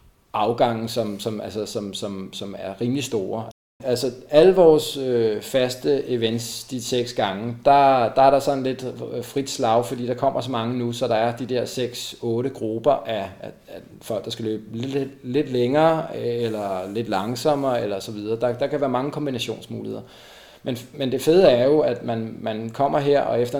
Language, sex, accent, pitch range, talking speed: Danish, male, native, 115-135 Hz, 190 wpm